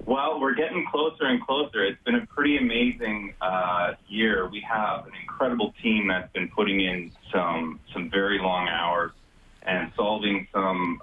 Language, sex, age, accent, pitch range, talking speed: English, male, 30-49, American, 95-110 Hz, 165 wpm